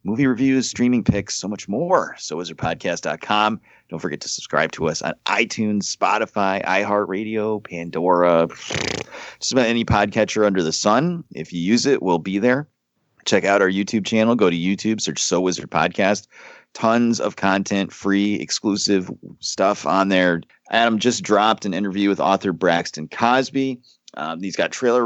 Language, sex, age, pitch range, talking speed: English, male, 30-49, 90-115 Hz, 160 wpm